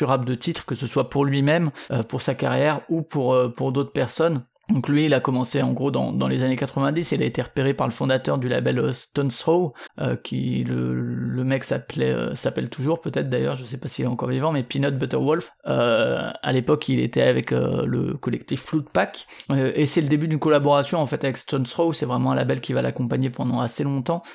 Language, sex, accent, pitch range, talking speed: French, male, French, 125-150 Hz, 230 wpm